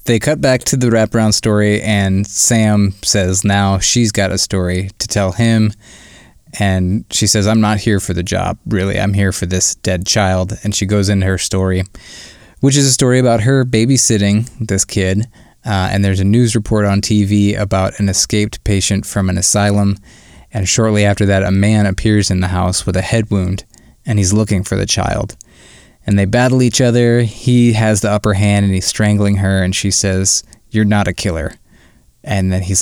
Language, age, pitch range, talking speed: English, 20-39, 95-110 Hz, 195 wpm